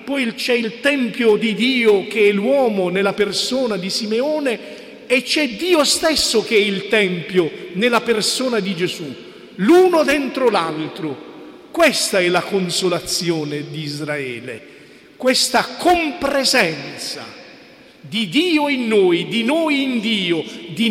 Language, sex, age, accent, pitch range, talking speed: Italian, male, 40-59, native, 195-265 Hz, 130 wpm